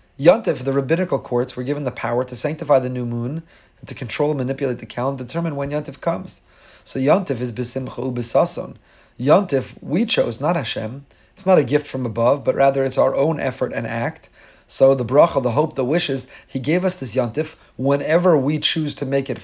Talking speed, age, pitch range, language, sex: 205 wpm, 40-59, 130-165 Hz, English, male